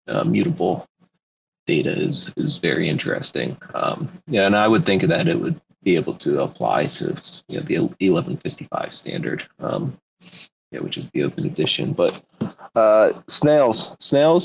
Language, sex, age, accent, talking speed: English, male, 30-49, American, 155 wpm